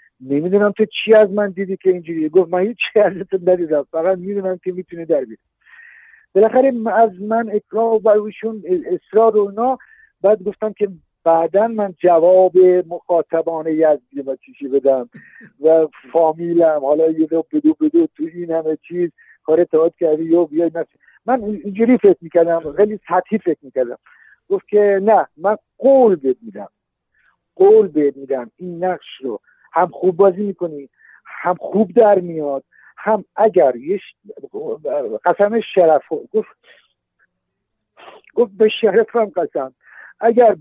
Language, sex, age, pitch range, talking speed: Persian, male, 60-79, 165-220 Hz, 140 wpm